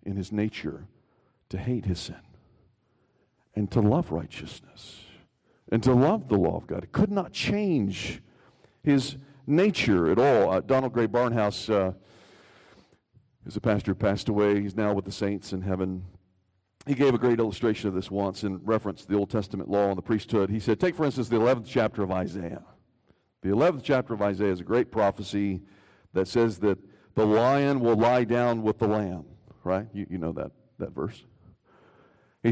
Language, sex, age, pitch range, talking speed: English, male, 50-69, 100-130 Hz, 185 wpm